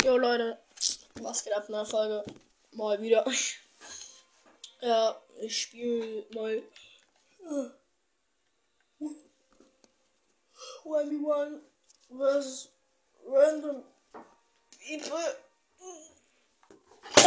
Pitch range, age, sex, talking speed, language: 250-375 Hz, 10-29, female, 65 wpm, English